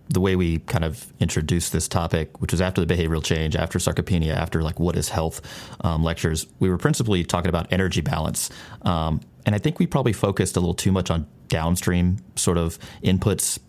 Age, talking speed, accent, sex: 30-49, 200 wpm, American, male